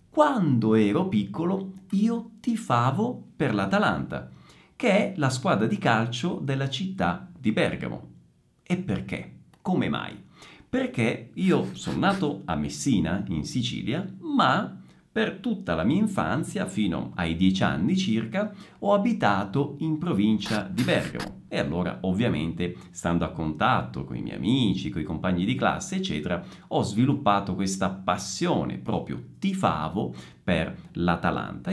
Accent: native